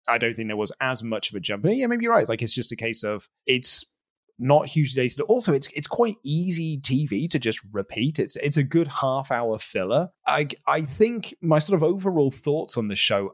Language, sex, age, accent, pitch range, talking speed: English, male, 30-49, British, 115-165 Hz, 240 wpm